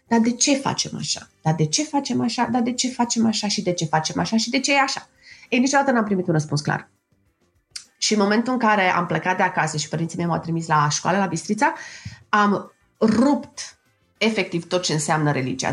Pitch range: 155-215 Hz